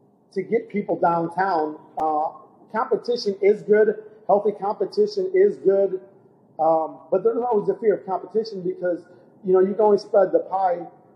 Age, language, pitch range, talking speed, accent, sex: 40-59, English, 160-200 Hz, 155 wpm, American, male